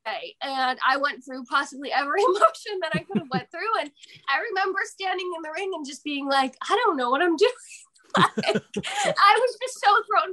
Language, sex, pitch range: English, female, 240-300 Hz